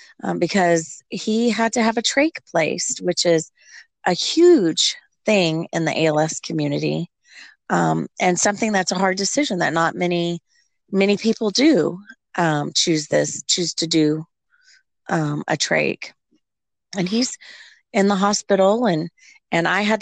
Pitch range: 165-215 Hz